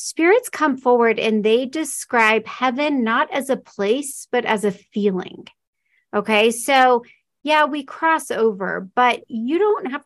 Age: 40-59